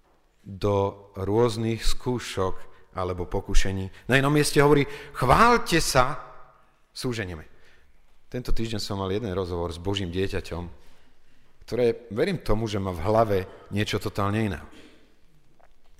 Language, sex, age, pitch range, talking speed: Slovak, male, 40-59, 85-115 Hz, 115 wpm